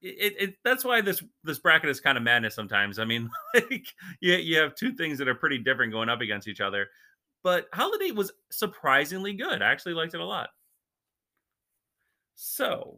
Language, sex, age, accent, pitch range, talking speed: English, male, 30-49, American, 120-190 Hz, 190 wpm